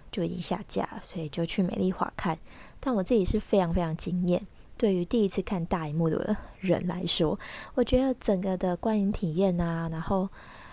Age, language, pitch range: 20-39, Chinese, 170-215 Hz